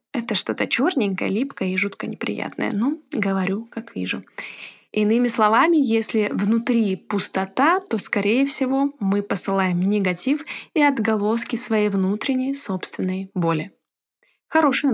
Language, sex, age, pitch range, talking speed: Russian, female, 20-39, 195-250 Hz, 115 wpm